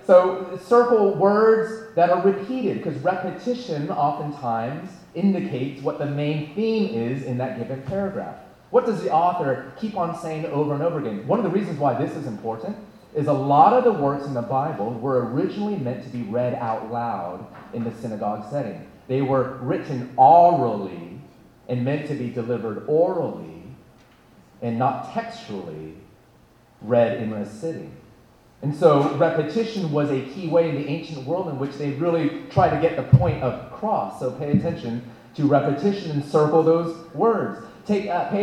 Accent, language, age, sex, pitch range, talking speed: American, English, 30-49, male, 130-195 Hz, 170 wpm